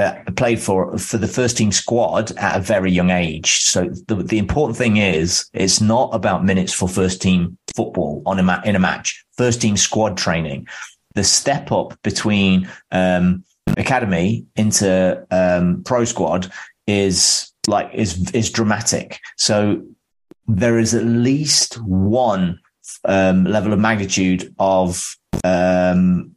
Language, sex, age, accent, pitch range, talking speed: English, male, 30-49, British, 90-110 Hz, 145 wpm